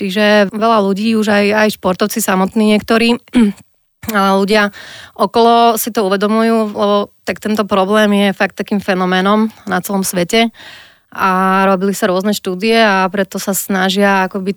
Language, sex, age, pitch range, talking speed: Slovak, female, 20-39, 180-205 Hz, 150 wpm